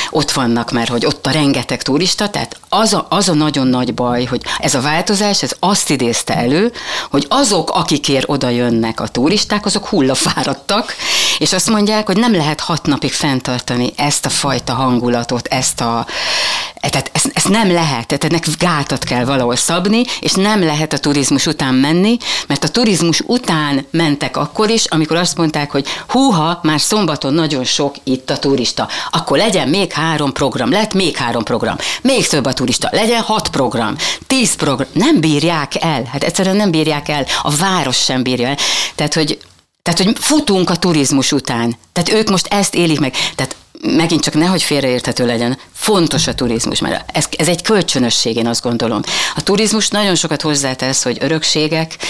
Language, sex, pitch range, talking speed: Hungarian, female, 125-175 Hz, 180 wpm